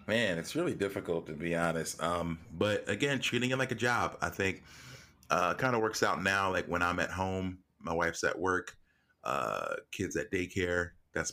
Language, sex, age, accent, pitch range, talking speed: English, male, 30-49, American, 75-95 Hz, 195 wpm